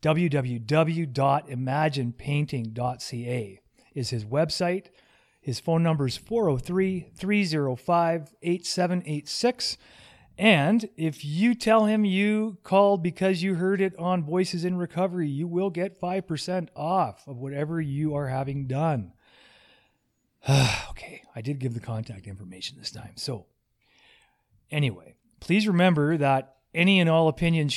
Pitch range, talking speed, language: 135-180 Hz, 115 wpm, English